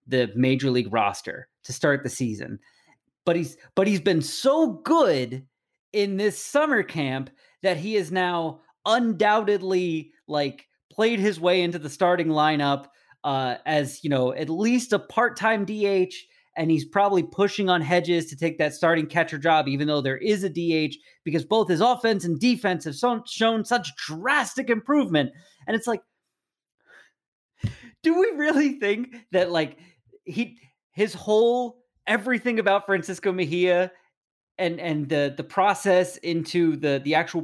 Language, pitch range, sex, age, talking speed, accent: English, 165-235 Hz, male, 30-49, 150 wpm, American